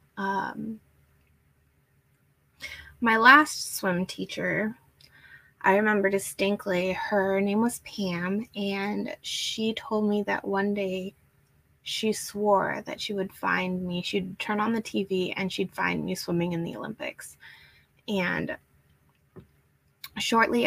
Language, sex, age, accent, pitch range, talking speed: English, female, 20-39, American, 185-220 Hz, 120 wpm